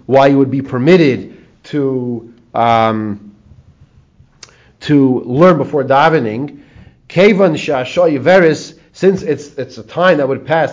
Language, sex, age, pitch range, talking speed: English, male, 40-59, 130-175 Hz, 105 wpm